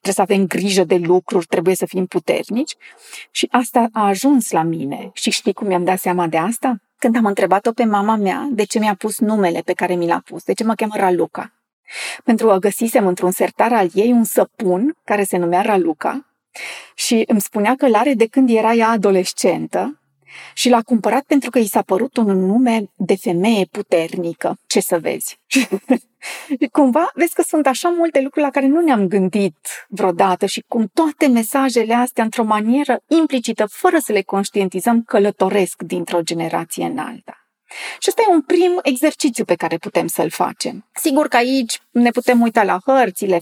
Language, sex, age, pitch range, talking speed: Romanian, female, 30-49, 190-260 Hz, 185 wpm